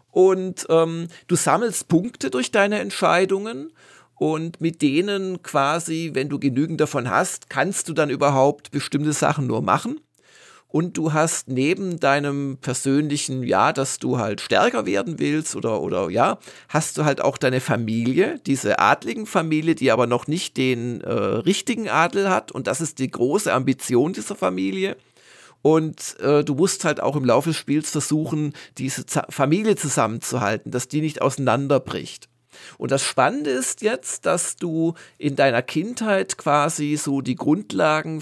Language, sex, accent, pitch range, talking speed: German, male, German, 135-170 Hz, 155 wpm